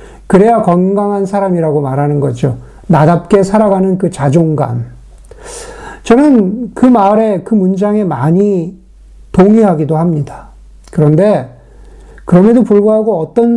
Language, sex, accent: Korean, male, native